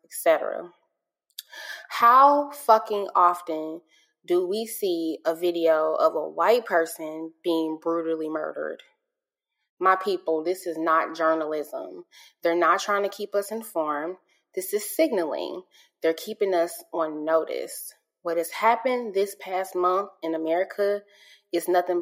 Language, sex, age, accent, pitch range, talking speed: English, female, 20-39, American, 165-220 Hz, 130 wpm